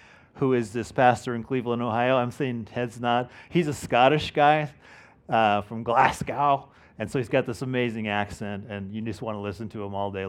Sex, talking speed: male, 205 wpm